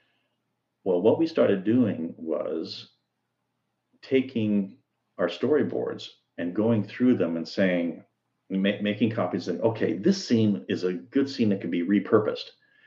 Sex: male